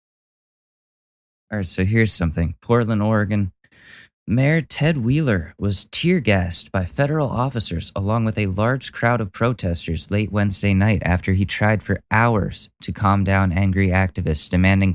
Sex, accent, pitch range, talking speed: male, American, 90-110 Hz, 150 wpm